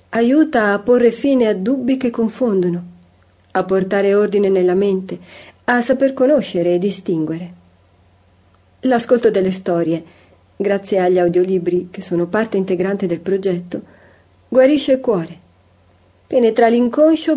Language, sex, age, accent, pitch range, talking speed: Italian, female, 40-59, native, 175-235 Hz, 120 wpm